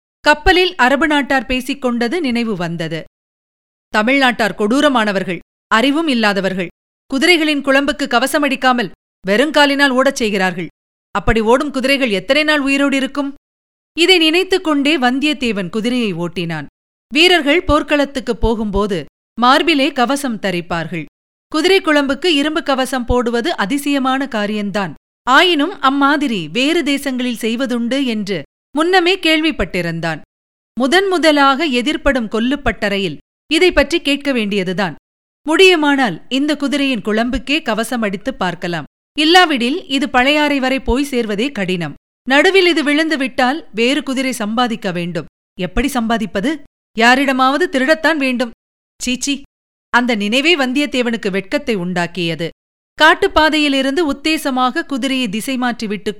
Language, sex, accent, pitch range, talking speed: Tamil, female, native, 220-290 Hz, 100 wpm